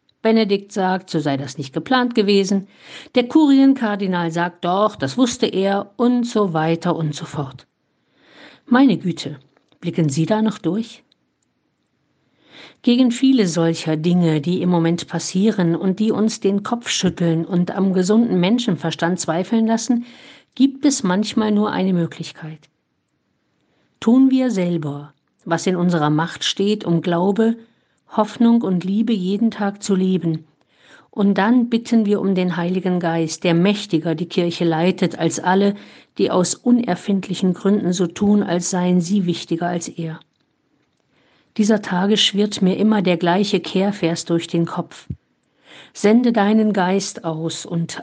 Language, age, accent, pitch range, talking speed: German, 50-69, German, 170-220 Hz, 140 wpm